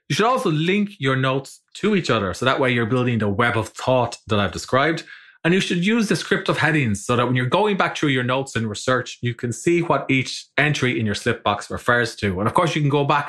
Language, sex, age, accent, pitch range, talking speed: English, male, 20-39, Irish, 115-155 Hz, 255 wpm